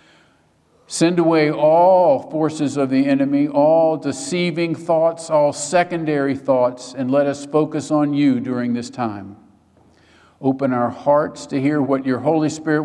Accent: American